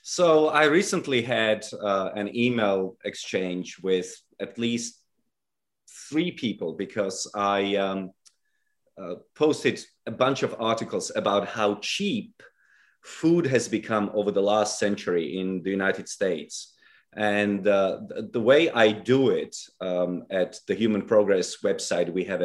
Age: 30-49